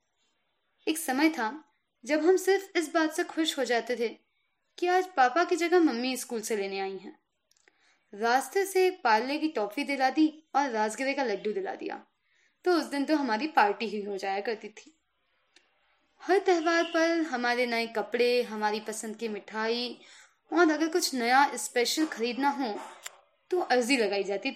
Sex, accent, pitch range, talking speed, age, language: female, native, 230-335 Hz, 170 wpm, 20-39, Hindi